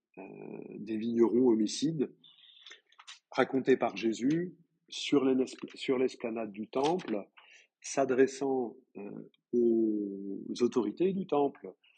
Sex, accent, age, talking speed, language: male, French, 50-69, 85 wpm, French